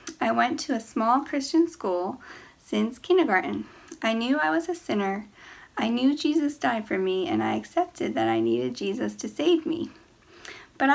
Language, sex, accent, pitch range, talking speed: English, female, American, 200-290 Hz, 175 wpm